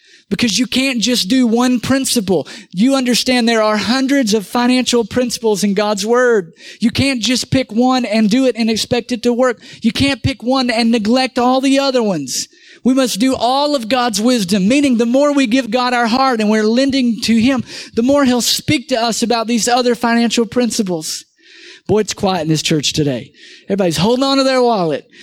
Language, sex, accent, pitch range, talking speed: English, male, American, 175-250 Hz, 200 wpm